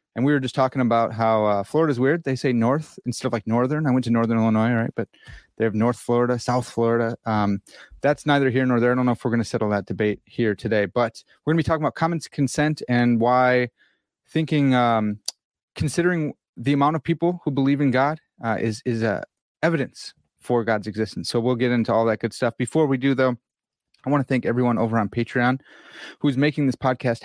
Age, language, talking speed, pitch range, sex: 30-49, English, 225 wpm, 115-145 Hz, male